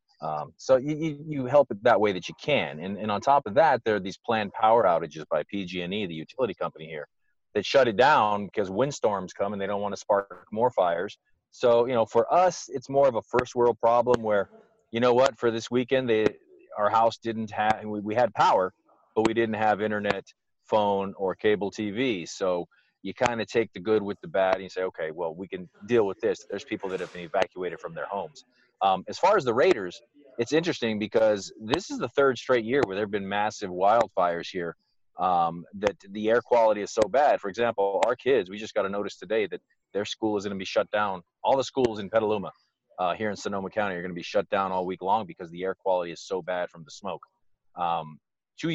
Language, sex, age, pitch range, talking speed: English, male, 30-49, 100-120 Hz, 235 wpm